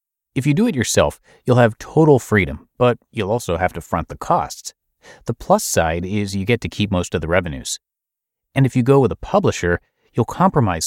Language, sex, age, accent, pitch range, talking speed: English, male, 30-49, American, 90-130 Hz, 210 wpm